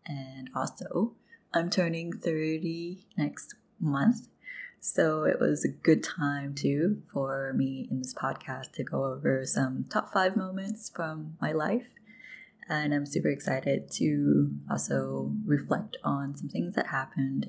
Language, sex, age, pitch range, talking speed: English, female, 20-39, 135-195 Hz, 140 wpm